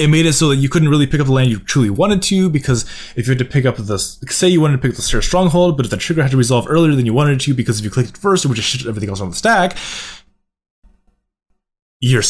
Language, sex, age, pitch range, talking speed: English, male, 20-39, 110-150 Hz, 300 wpm